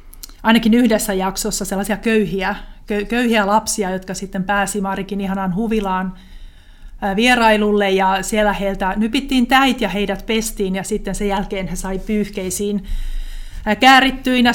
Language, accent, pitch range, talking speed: Finnish, native, 195-225 Hz, 125 wpm